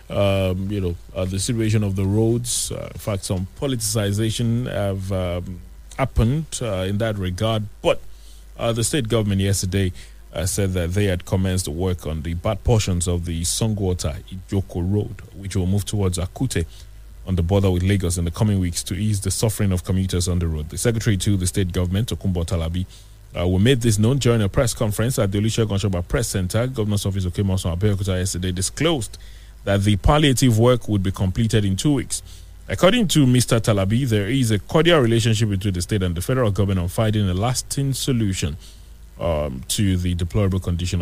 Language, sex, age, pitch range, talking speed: English, male, 30-49, 90-115 Hz, 190 wpm